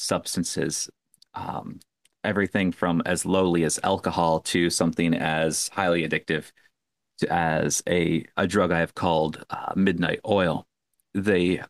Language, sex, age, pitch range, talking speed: English, male, 30-49, 85-95 Hz, 125 wpm